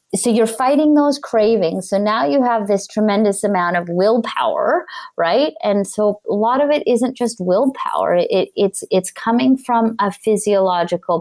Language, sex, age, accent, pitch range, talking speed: English, female, 30-49, American, 170-225 Hz, 165 wpm